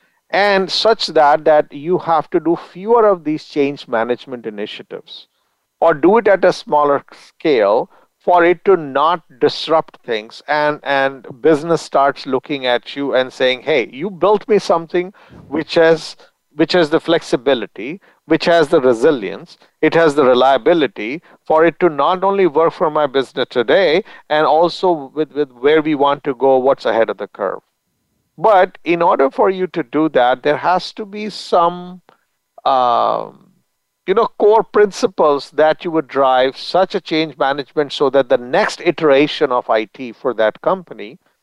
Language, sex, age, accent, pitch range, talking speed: English, male, 50-69, Indian, 135-180 Hz, 165 wpm